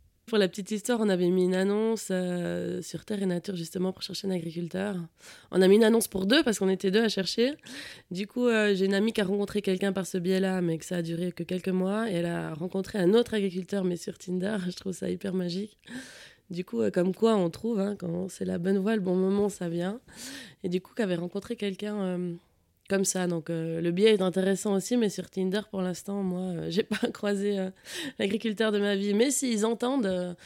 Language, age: French, 20-39